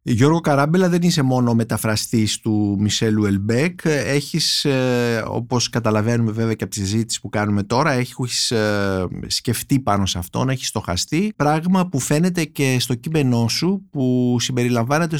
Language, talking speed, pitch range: Greek, 155 wpm, 115-165 Hz